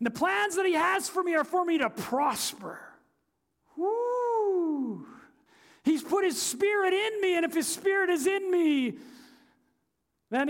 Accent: American